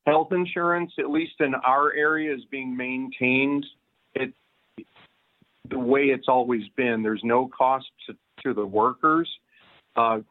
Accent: American